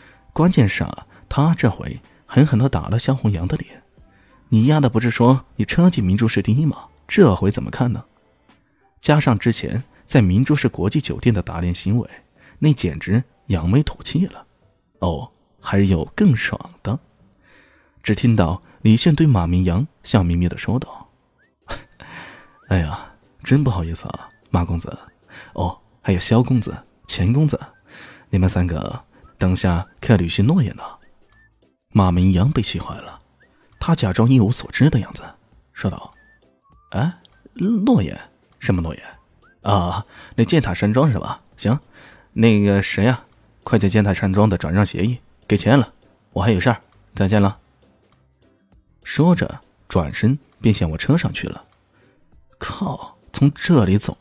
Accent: native